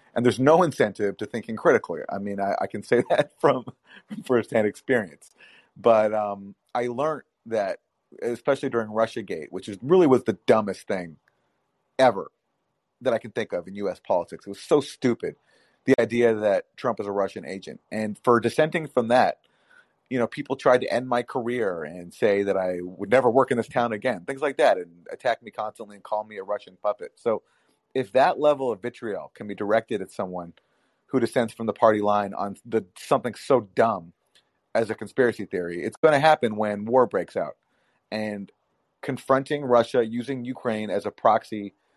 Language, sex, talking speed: English, male, 190 wpm